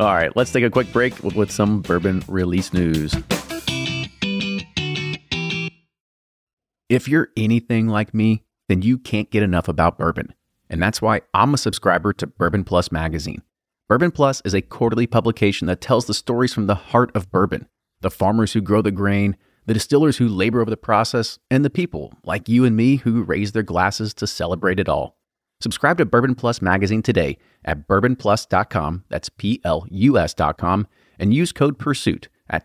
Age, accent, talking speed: 30-49, American, 175 wpm